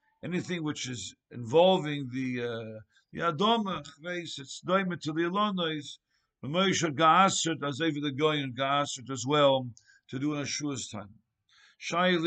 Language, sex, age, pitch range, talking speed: English, male, 60-79, 135-180 Hz, 155 wpm